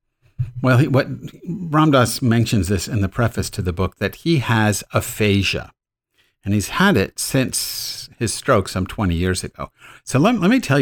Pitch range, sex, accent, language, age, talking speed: 100-125 Hz, male, American, English, 50-69, 175 wpm